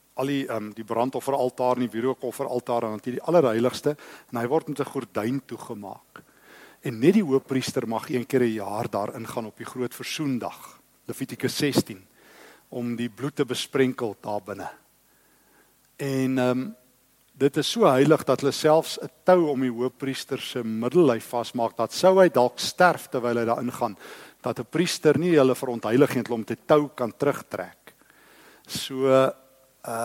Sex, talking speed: male, 165 wpm